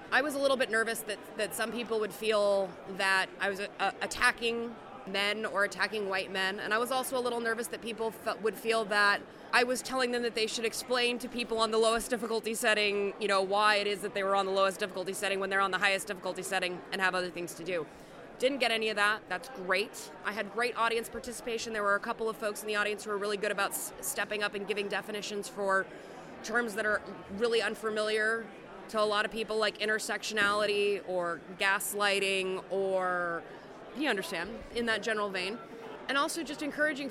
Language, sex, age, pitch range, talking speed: English, female, 20-39, 200-230 Hz, 220 wpm